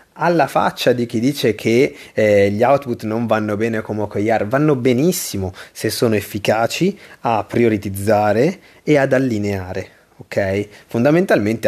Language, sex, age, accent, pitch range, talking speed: Italian, male, 30-49, native, 105-125 Hz, 130 wpm